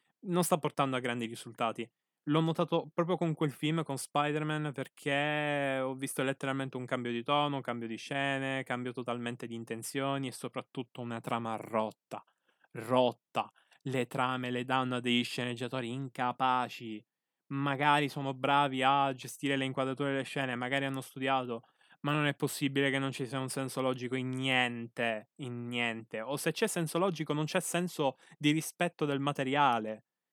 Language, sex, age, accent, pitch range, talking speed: Italian, male, 20-39, native, 130-165 Hz, 165 wpm